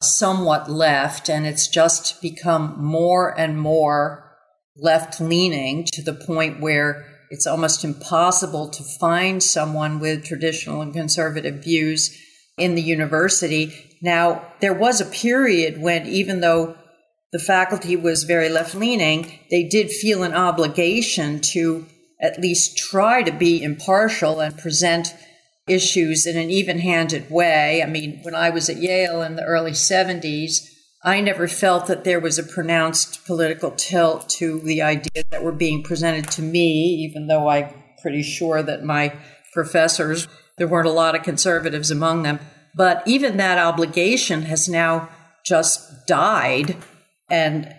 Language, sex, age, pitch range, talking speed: English, female, 50-69, 155-175 Hz, 145 wpm